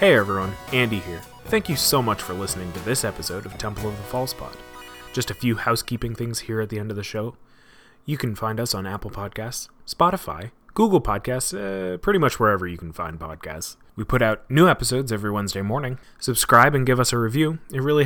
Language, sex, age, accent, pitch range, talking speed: English, male, 30-49, American, 105-140 Hz, 215 wpm